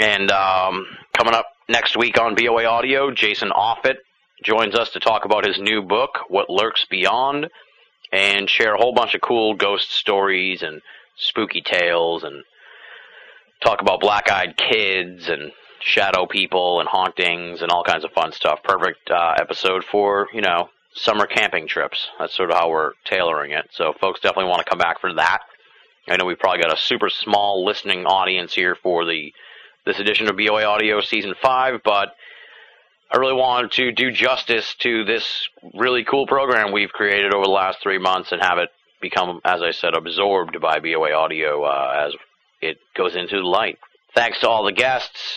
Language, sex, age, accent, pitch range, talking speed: English, male, 30-49, American, 95-110 Hz, 180 wpm